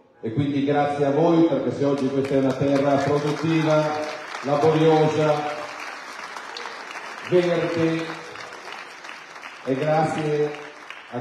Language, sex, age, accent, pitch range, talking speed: Italian, male, 40-59, native, 130-155 Hz, 95 wpm